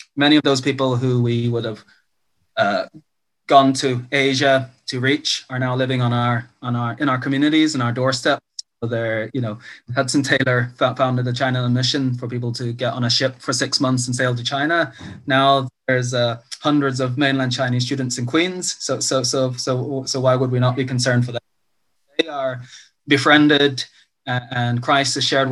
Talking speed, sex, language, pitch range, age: 190 wpm, male, English, 115-135 Hz, 20-39